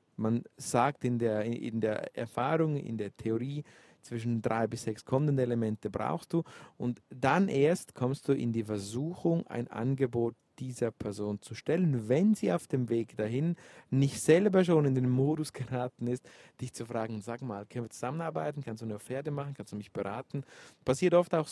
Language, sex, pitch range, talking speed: German, male, 120-155 Hz, 180 wpm